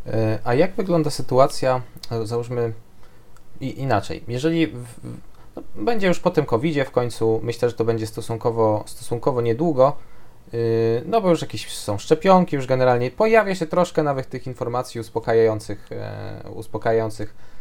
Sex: male